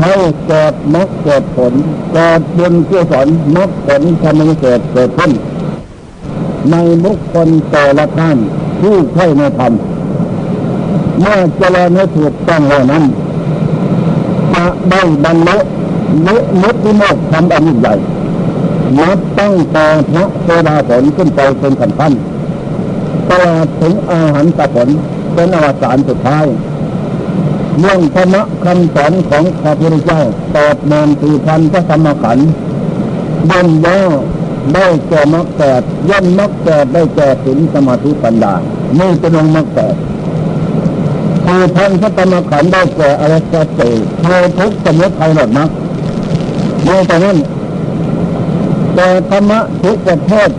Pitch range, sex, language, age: 155-185 Hz, male, Thai, 60-79